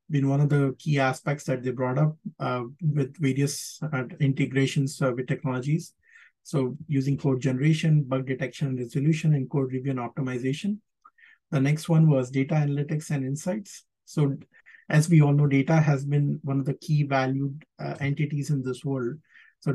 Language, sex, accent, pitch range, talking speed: English, male, Indian, 135-160 Hz, 175 wpm